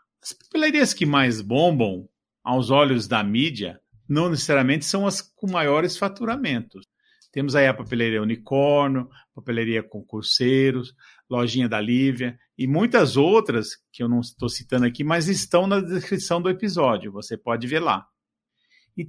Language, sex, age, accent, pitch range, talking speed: Portuguese, male, 50-69, Brazilian, 120-180 Hz, 150 wpm